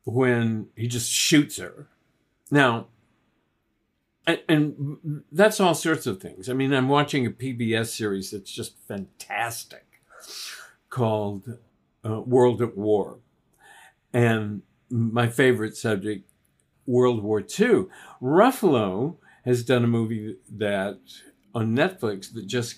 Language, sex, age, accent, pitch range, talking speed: English, male, 50-69, American, 110-135 Hz, 120 wpm